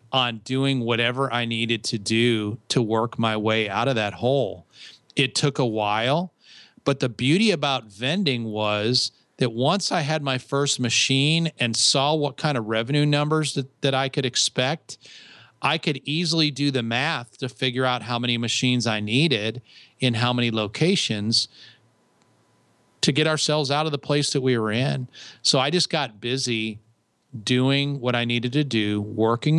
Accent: American